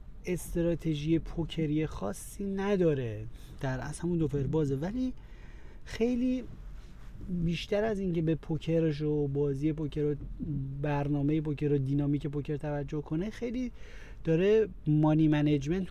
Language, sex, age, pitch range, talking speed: Persian, male, 30-49, 145-175 Hz, 115 wpm